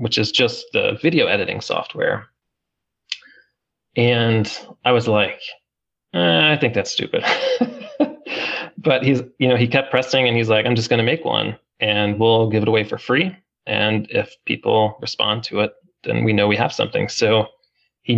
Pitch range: 105-135 Hz